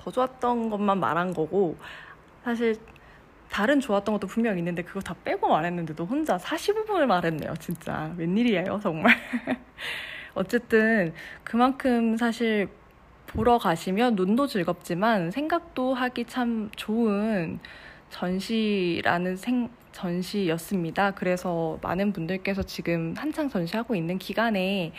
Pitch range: 175-230 Hz